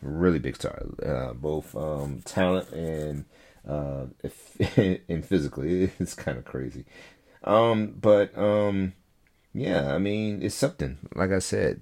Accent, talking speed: American, 135 wpm